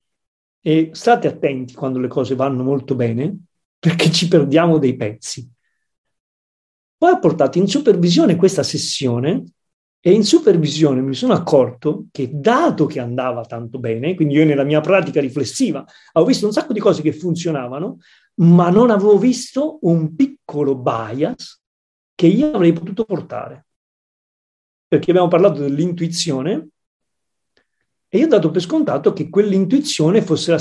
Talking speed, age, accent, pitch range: 145 wpm, 40-59, native, 140-195 Hz